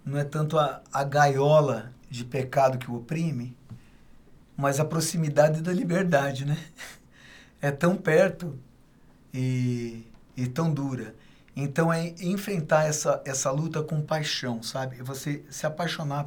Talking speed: 135 wpm